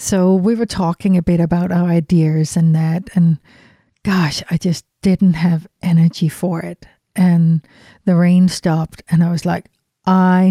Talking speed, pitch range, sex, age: 165 wpm, 165-190 Hz, female, 60-79